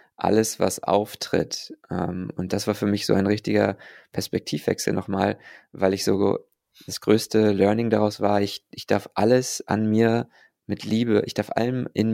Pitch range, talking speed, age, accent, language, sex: 95-110 Hz, 165 wpm, 20-39, German, English, male